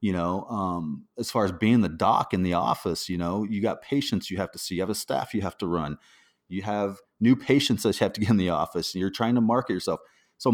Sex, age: male, 30-49